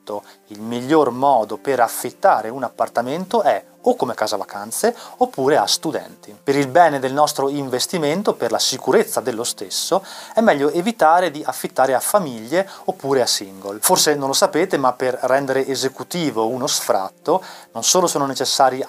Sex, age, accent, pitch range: male, 30-49, native, 115-150 Hz